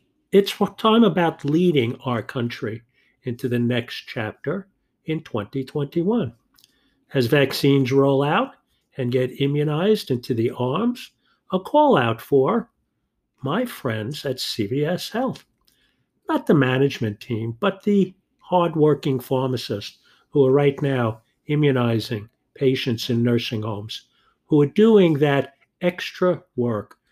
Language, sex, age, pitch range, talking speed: English, male, 50-69, 120-170 Hz, 120 wpm